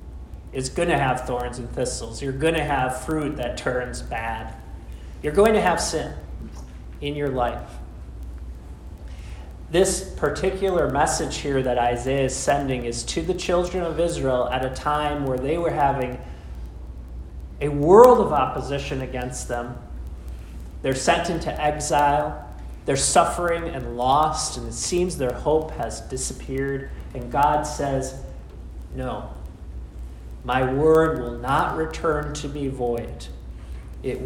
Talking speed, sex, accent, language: 140 wpm, male, American, English